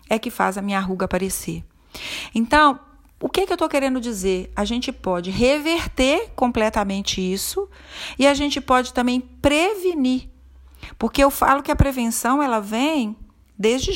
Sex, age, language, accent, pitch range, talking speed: female, 40-59, Portuguese, Brazilian, 190-255 Hz, 160 wpm